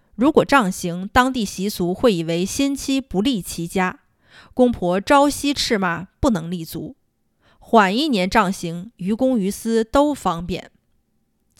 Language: Chinese